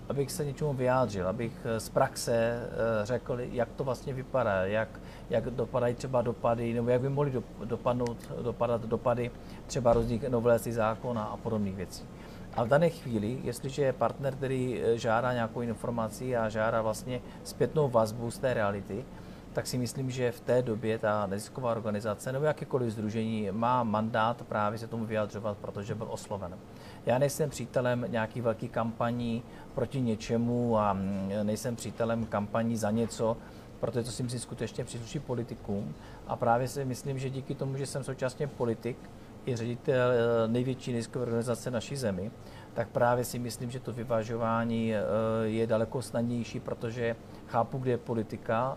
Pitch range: 110-125 Hz